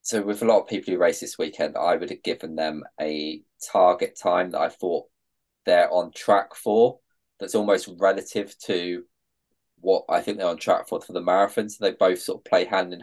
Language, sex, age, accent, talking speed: English, male, 20-39, British, 210 wpm